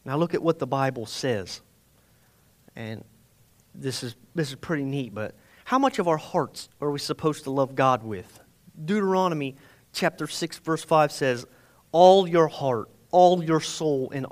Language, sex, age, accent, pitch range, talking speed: English, male, 30-49, American, 140-195 Hz, 170 wpm